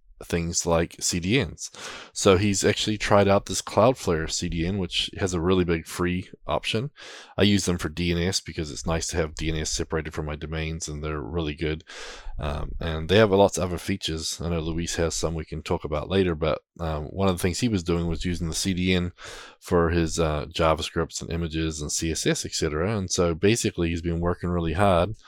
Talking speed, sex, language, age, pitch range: 205 wpm, male, English, 20-39, 80-95 Hz